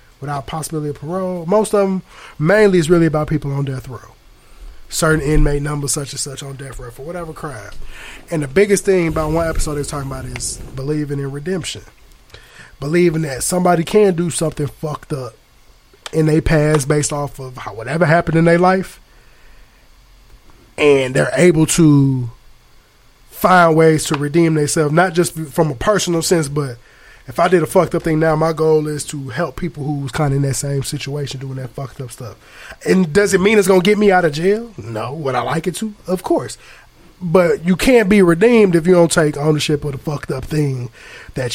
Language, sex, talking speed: English, male, 200 wpm